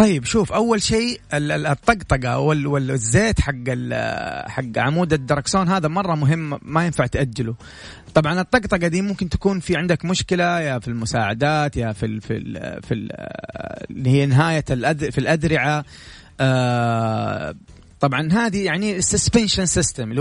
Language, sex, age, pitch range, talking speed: Arabic, male, 30-49, 130-165 Hz, 135 wpm